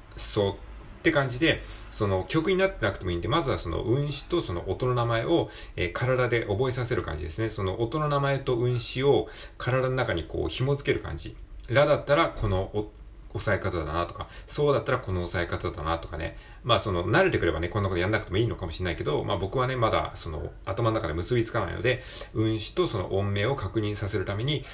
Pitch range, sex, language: 85-125 Hz, male, Japanese